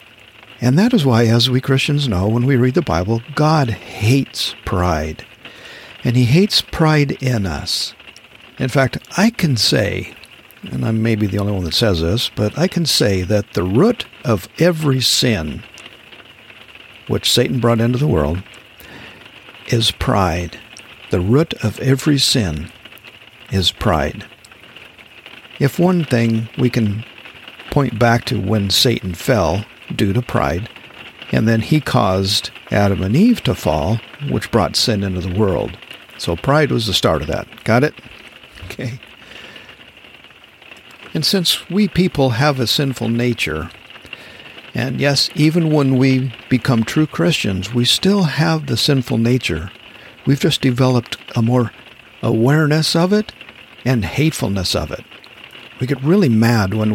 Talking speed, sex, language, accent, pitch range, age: 145 wpm, male, English, American, 105-140 Hz, 60-79